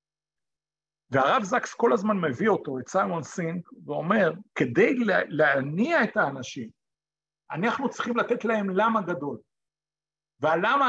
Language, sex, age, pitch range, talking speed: Hebrew, male, 50-69, 165-220 Hz, 115 wpm